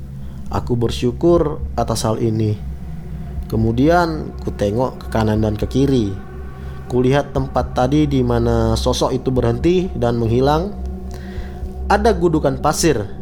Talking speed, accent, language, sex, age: 120 wpm, native, Indonesian, male, 20-39